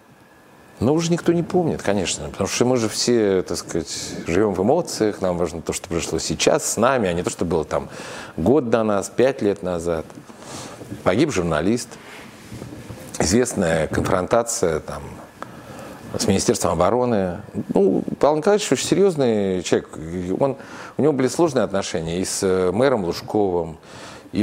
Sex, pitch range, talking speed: male, 85-115 Hz, 150 wpm